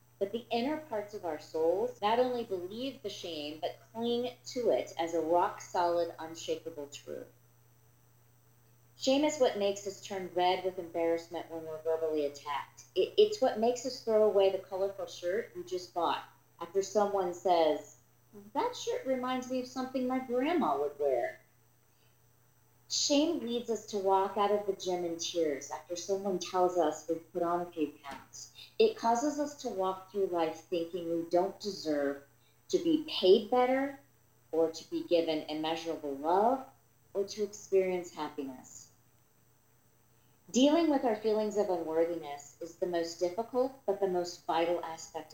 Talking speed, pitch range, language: 160 wpm, 155-215 Hz, English